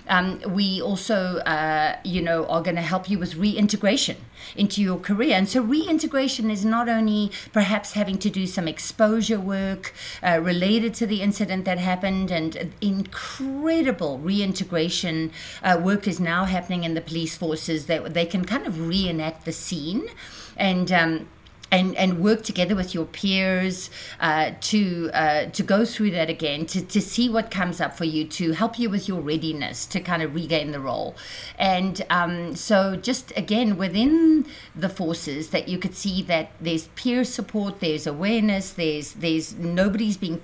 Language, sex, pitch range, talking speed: English, female, 165-210 Hz, 170 wpm